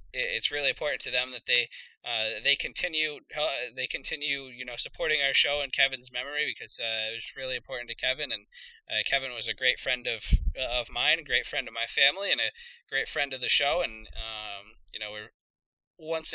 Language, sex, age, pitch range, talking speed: English, male, 20-39, 115-155 Hz, 215 wpm